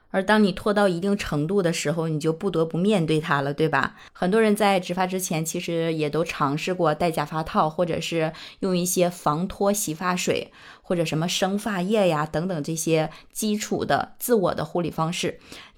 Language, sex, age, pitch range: Chinese, female, 20-39, 160-205 Hz